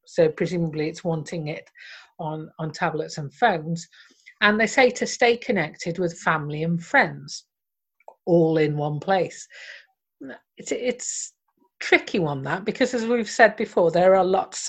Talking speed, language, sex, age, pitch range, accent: 150 wpm, English, female, 40-59, 170-225 Hz, British